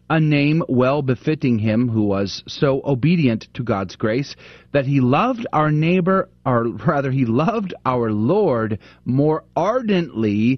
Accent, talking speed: American, 140 wpm